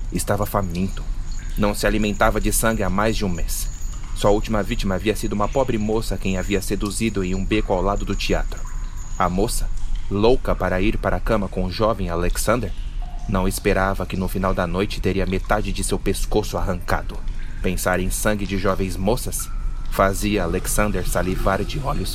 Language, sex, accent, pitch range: Portuguese, male, Brazilian, 95-110 Hz